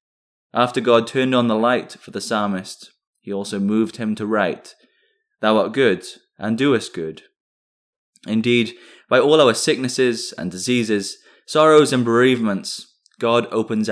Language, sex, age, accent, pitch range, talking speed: English, male, 20-39, British, 110-140 Hz, 140 wpm